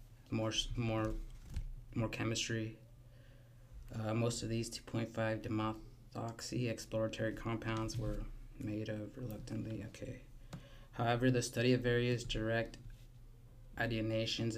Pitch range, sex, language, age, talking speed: 110-120 Hz, male, English, 20-39, 100 wpm